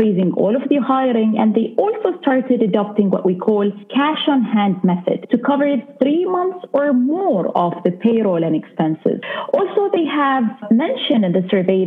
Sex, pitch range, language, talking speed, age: female, 195-275 Hz, English, 175 wpm, 30-49